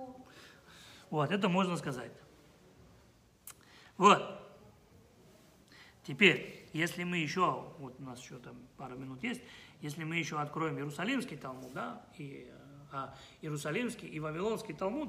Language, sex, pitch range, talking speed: Russian, male, 145-190 Hz, 115 wpm